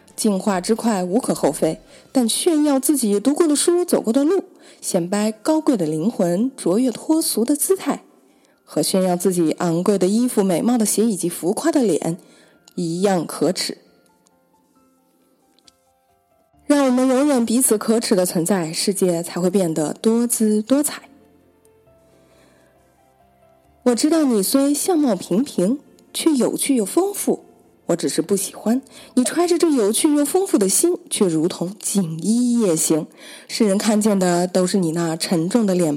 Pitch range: 180-280 Hz